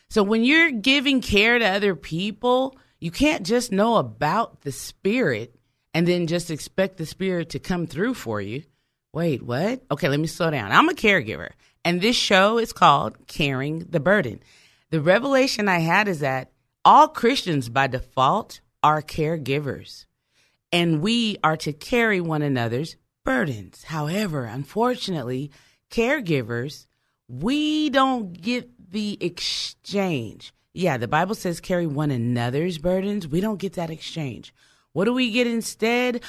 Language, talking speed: English, 150 wpm